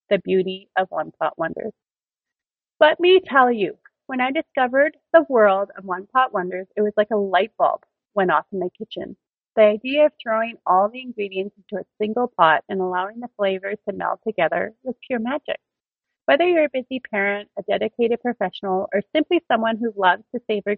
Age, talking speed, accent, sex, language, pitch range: 30-49, 190 wpm, American, female, English, 195-255 Hz